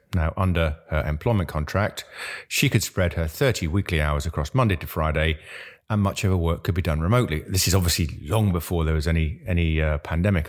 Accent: British